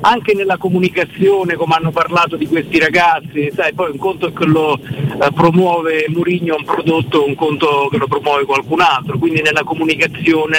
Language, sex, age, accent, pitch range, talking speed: Italian, male, 50-69, native, 155-175 Hz, 175 wpm